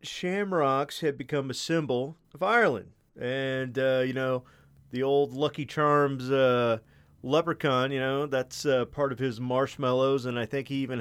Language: English